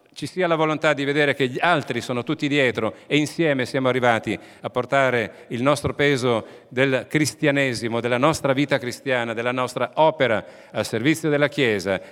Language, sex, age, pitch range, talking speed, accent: Italian, male, 40-59, 110-145 Hz, 170 wpm, native